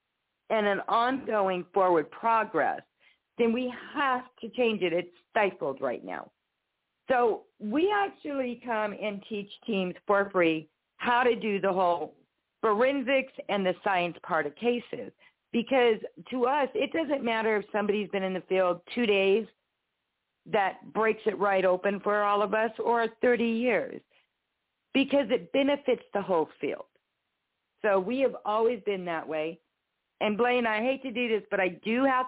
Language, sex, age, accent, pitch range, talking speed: English, female, 50-69, American, 190-245 Hz, 160 wpm